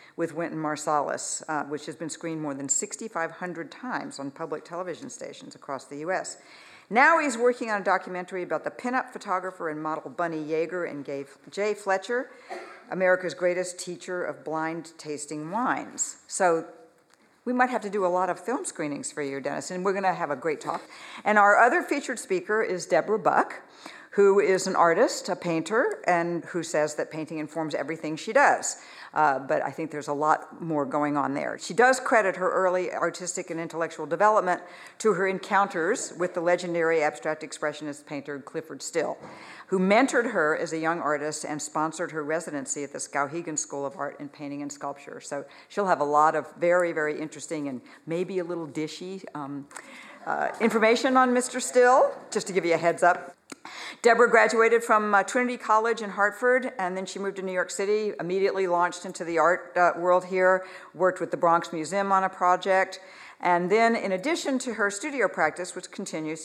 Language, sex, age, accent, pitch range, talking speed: English, female, 60-79, American, 155-200 Hz, 185 wpm